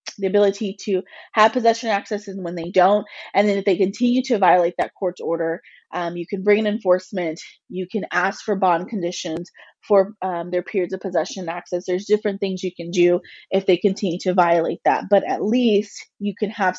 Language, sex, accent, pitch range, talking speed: English, female, American, 185-225 Hz, 205 wpm